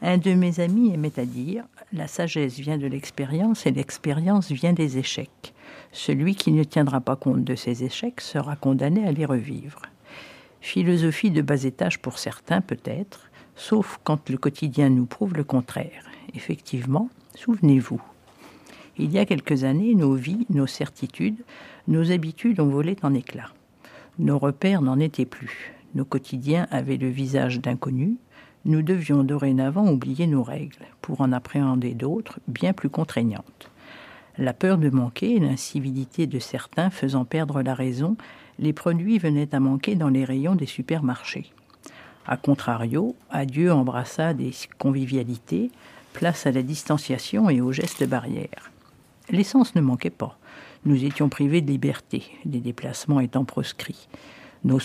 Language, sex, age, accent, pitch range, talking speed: French, female, 60-79, French, 130-175 Hz, 150 wpm